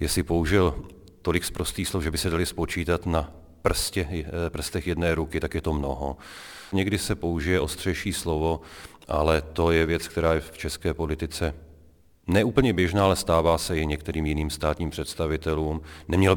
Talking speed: 160 wpm